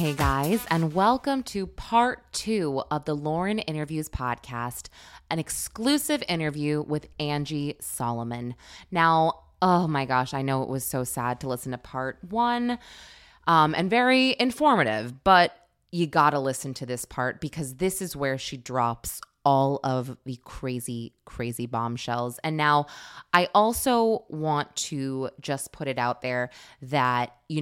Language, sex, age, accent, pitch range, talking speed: English, female, 20-39, American, 130-175 Hz, 150 wpm